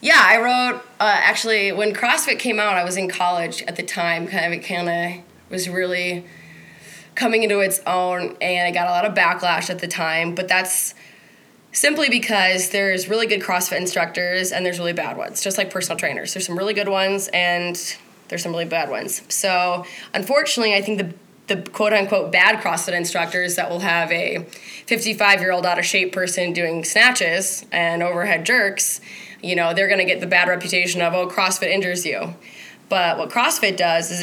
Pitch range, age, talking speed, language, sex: 175-200 Hz, 20-39, 190 wpm, English, female